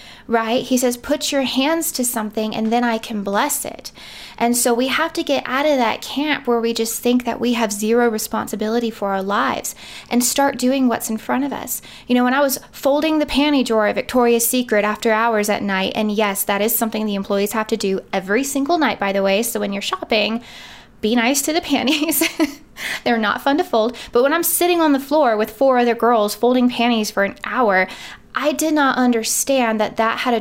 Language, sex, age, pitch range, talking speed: English, female, 20-39, 220-260 Hz, 225 wpm